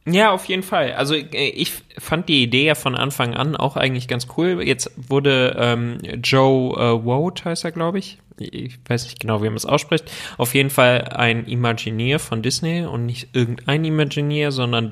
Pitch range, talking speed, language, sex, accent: 120-145 Hz, 190 wpm, German, male, German